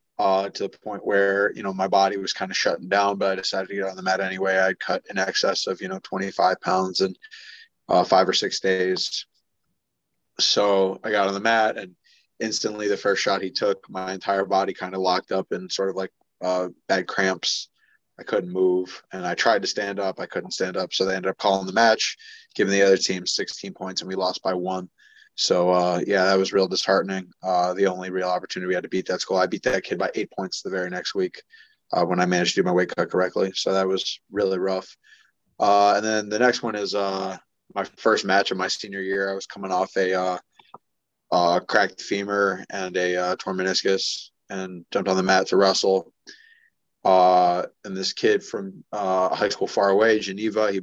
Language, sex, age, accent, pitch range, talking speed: English, male, 20-39, American, 95-100 Hz, 225 wpm